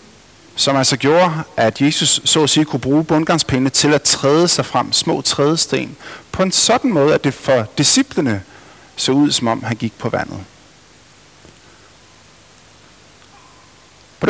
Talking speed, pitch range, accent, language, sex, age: 145 wpm, 120-160 Hz, native, Danish, male, 50-69